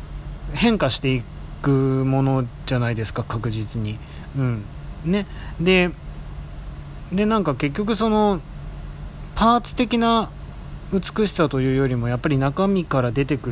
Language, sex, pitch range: Japanese, male, 115-160 Hz